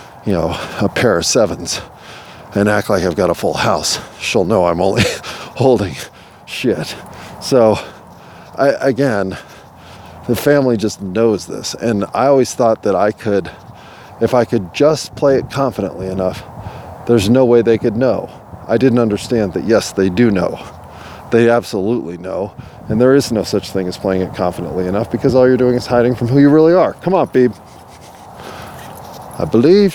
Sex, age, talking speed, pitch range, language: male, 40-59, 175 wpm, 95-125 Hz, English